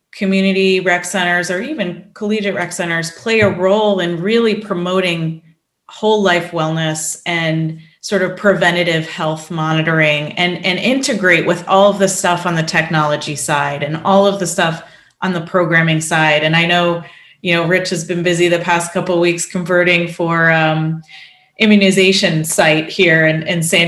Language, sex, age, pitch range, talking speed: English, female, 30-49, 165-200 Hz, 170 wpm